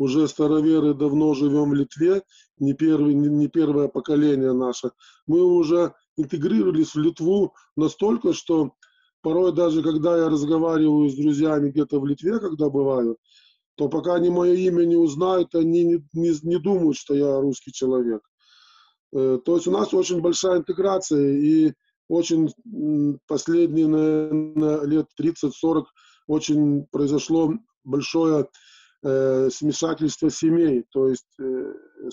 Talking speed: 125 wpm